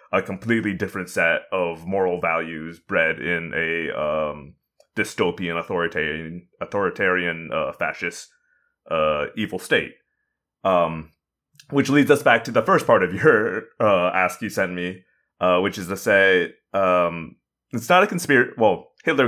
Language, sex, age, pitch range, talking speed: English, male, 30-49, 85-100 Hz, 145 wpm